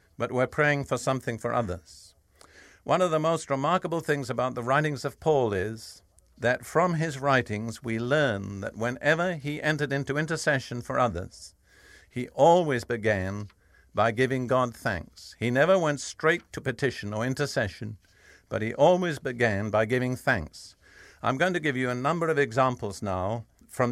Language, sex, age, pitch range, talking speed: English, male, 50-69, 105-145 Hz, 165 wpm